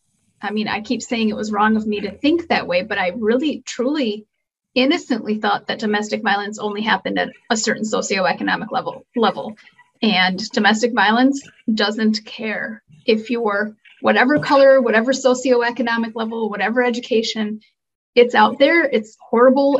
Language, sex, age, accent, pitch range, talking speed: English, female, 30-49, American, 210-255 Hz, 150 wpm